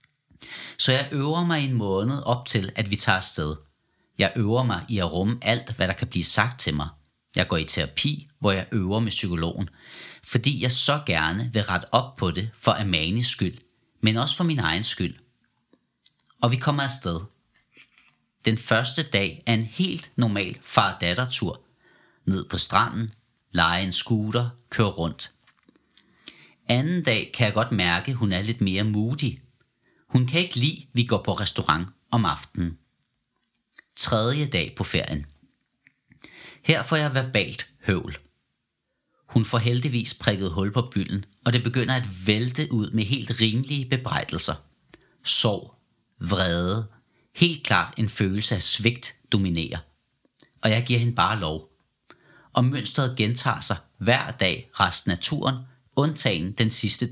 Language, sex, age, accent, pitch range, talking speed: Danish, male, 40-59, native, 95-125 Hz, 155 wpm